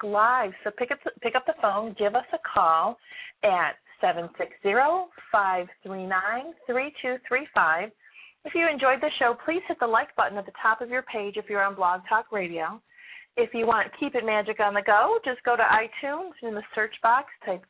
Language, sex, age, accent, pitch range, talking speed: English, female, 30-49, American, 195-250 Hz, 180 wpm